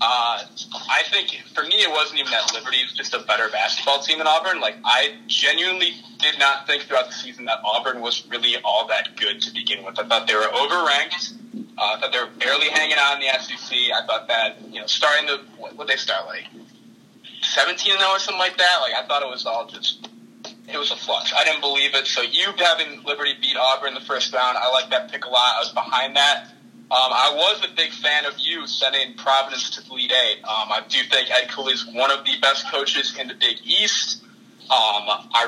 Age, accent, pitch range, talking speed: 20-39, American, 135-185 Hz, 230 wpm